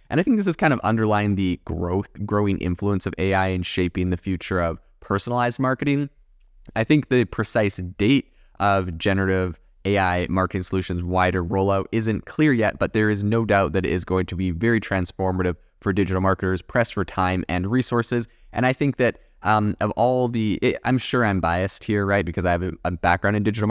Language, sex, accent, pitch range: English, male, American, 90-105 Hz